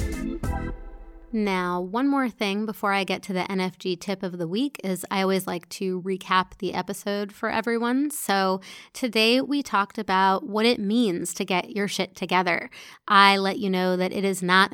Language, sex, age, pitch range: English, female, 30-49, 180-205 Hz